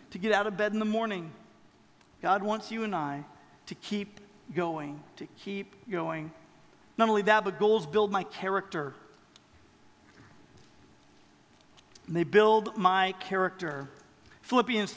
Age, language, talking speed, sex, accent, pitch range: 40-59, English, 130 wpm, male, American, 195-245 Hz